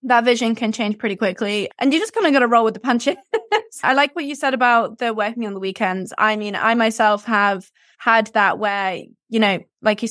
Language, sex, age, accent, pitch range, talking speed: English, female, 20-39, British, 205-240 Hz, 235 wpm